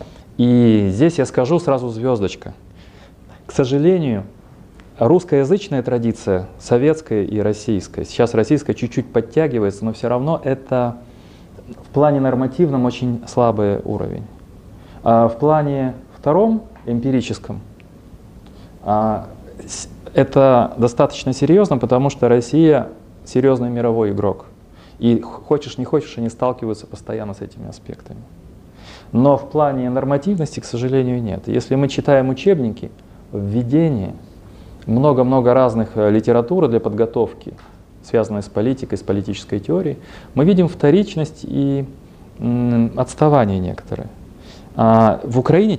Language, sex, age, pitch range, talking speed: Russian, male, 30-49, 105-140 Hz, 105 wpm